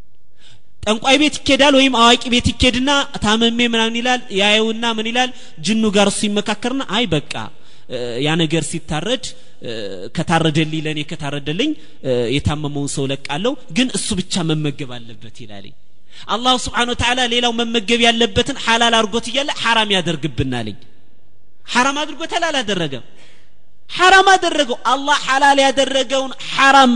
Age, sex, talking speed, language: 30-49, male, 110 wpm, Amharic